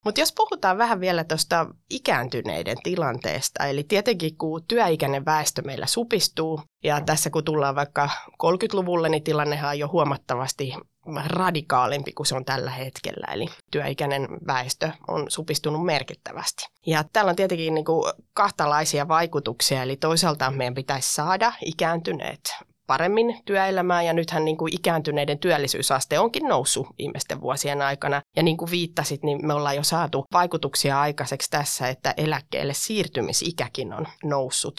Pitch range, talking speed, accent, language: 140-175 Hz, 135 wpm, native, Finnish